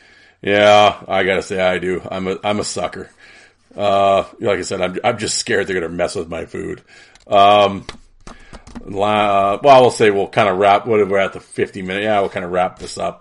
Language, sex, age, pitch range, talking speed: English, male, 40-59, 95-120 Hz, 225 wpm